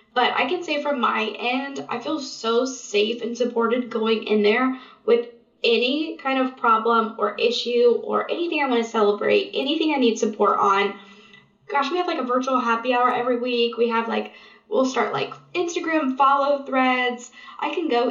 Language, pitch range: English, 220-280 Hz